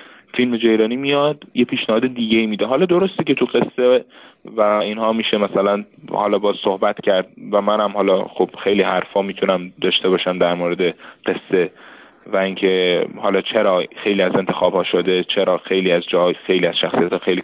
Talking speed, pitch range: 165 wpm, 100-125 Hz